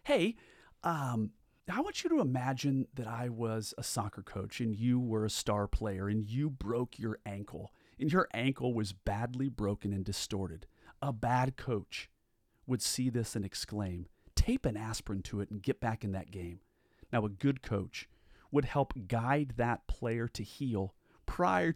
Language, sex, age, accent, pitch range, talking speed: English, male, 40-59, American, 100-130 Hz, 175 wpm